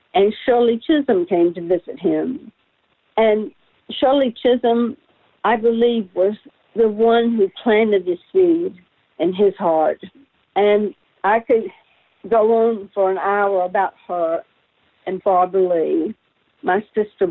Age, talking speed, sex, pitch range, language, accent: 60-79, 130 wpm, female, 185-235 Hz, English, American